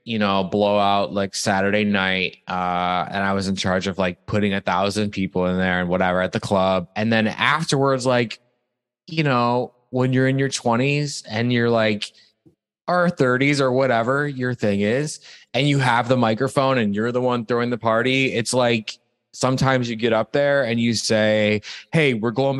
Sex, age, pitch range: male, 20-39, 100-130 Hz